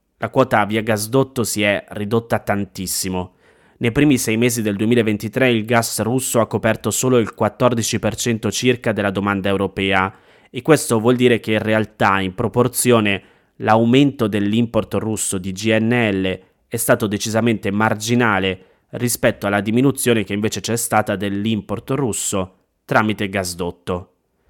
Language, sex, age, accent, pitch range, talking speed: Italian, male, 20-39, native, 100-120 Hz, 135 wpm